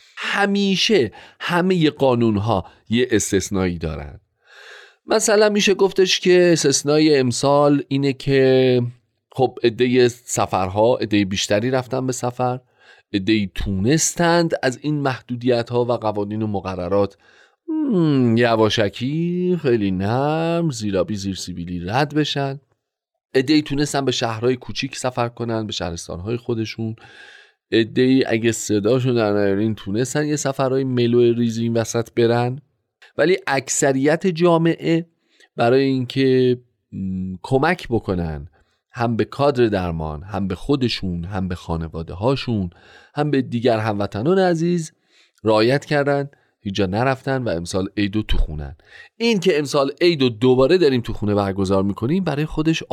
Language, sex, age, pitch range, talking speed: Persian, male, 40-59, 105-145 Hz, 120 wpm